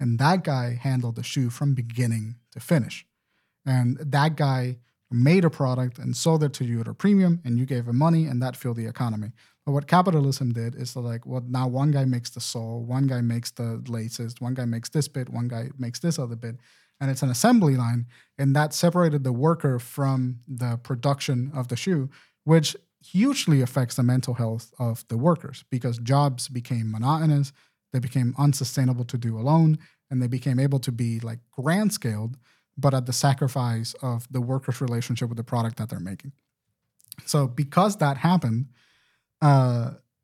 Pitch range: 120-145 Hz